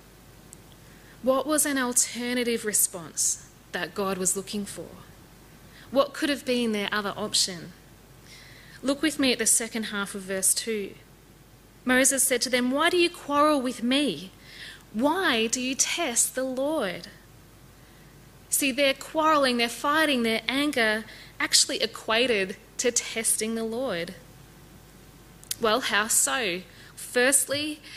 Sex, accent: female, Australian